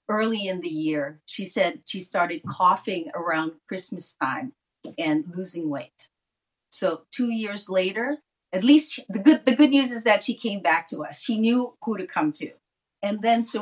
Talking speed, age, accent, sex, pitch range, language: 190 wpm, 50-69, American, female, 160-220 Hz, English